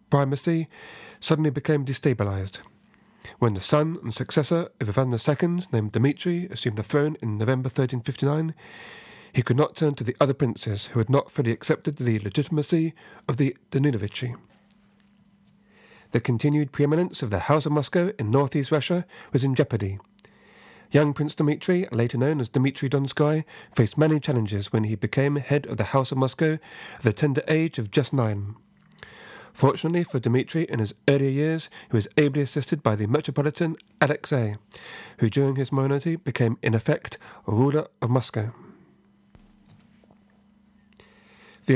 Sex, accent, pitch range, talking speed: male, British, 120-155 Hz, 150 wpm